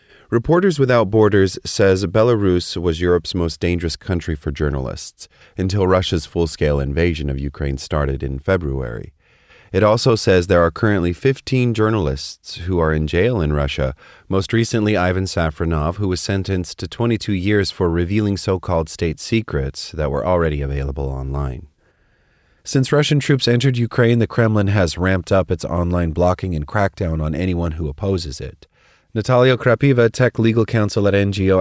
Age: 30-49